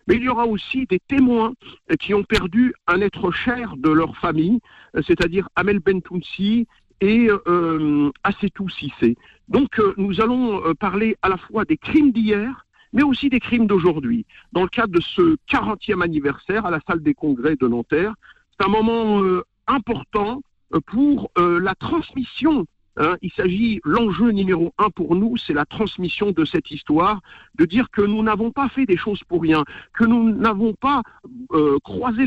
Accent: French